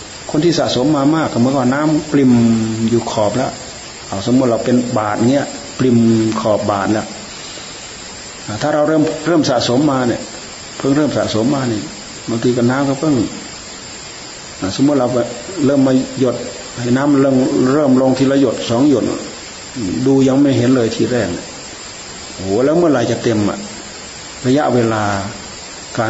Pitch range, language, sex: 110-125 Hz, Thai, male